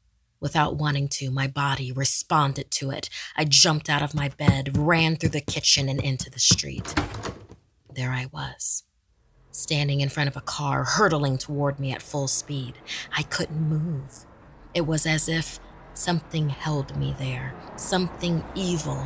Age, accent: 30-49, American